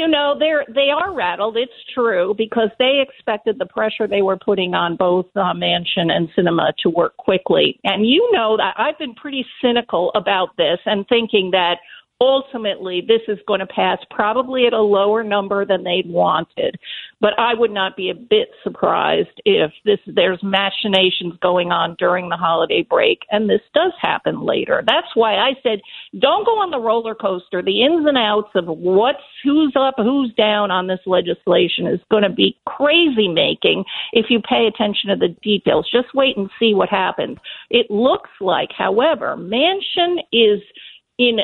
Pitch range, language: 195-275 Hz, English